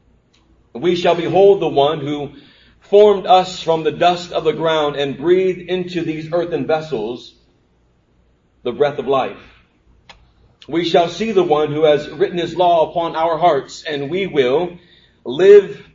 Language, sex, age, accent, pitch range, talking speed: English, male, 40-59, American, 150-185 Hz, 155 wpm